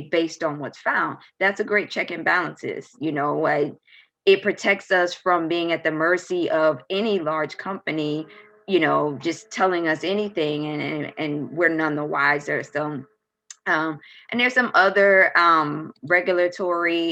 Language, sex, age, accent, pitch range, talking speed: English, female, 20-39, American, 155-190 Hz, 160 wpm